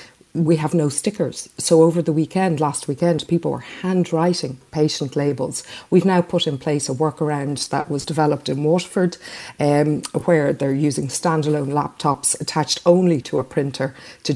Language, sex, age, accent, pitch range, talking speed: English, female, 50-69, Irish, 145-165 Hz, 165 wpm